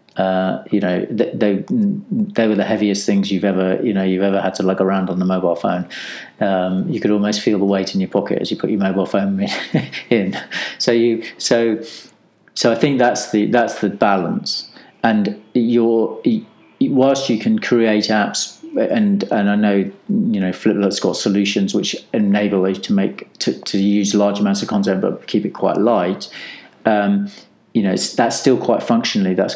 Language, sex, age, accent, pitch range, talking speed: English, male, 40-59, British, 95-115 Hz, 190 wpm